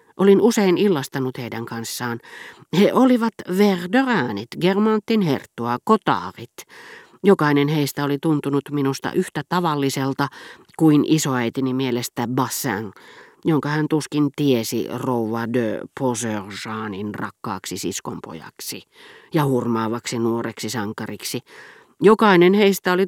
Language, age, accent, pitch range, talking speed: Finnish, 40-59, native, 120-195 Hz, 100 wpm